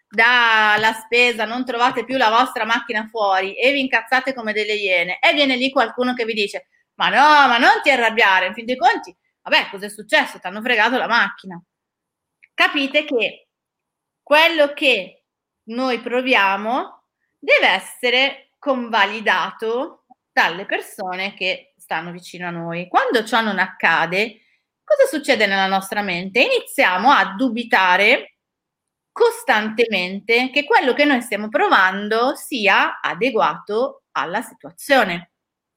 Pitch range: 205-270 Hz